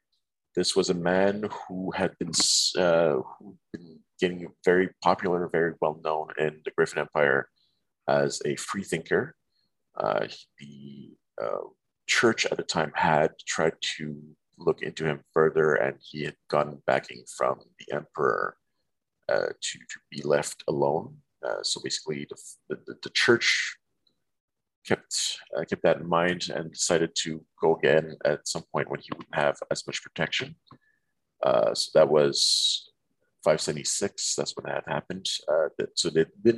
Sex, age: male, 40-59